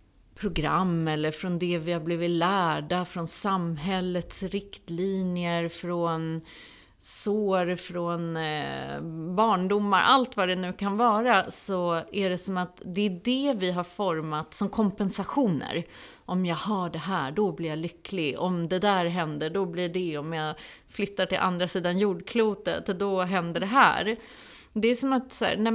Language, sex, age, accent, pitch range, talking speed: Swedish, female, 30-49, native, 170-220 Hz, 155 wpm